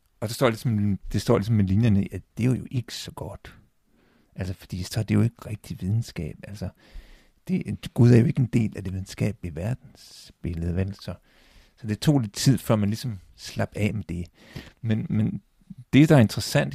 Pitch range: 100-130 Hz